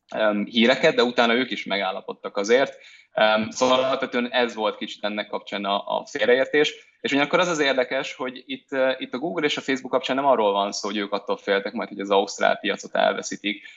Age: 20-39